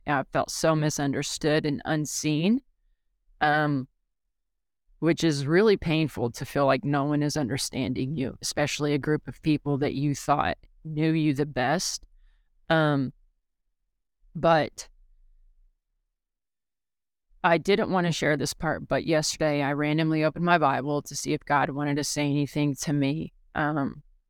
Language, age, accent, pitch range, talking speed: English, 30-49, American, 140-160 Hz, 145 wpm